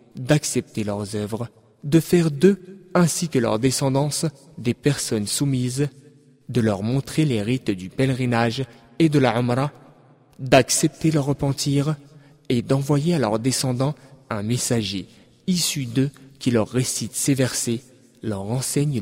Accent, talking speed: French, 135 wpm